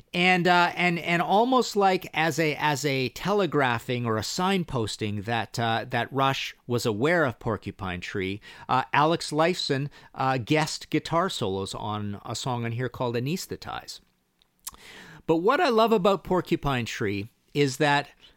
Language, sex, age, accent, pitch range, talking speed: English, male, 50-69, American, 115-165 Hz, 150 wpm